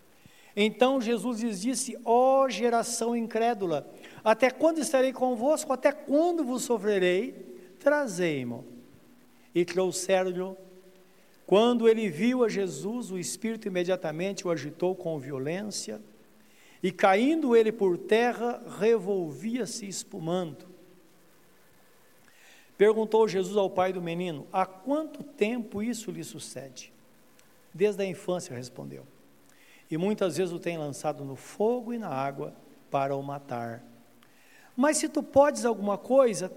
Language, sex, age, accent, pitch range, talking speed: Portuguese, male, 60-79, Brazilian, 170-235 Hz, 120 wpm